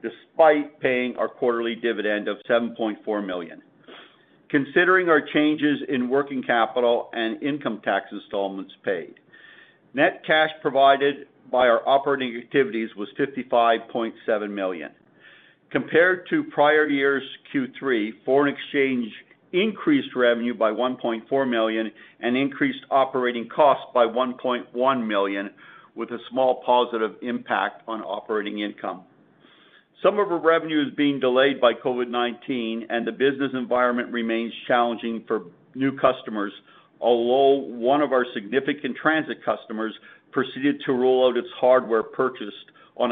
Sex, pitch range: male, 115-140 Hz